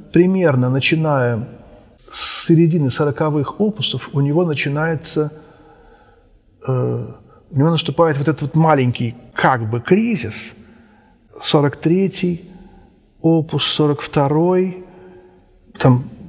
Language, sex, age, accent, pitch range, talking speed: Russian, male, 40-59, native, 135-180 Hz, 90 wpm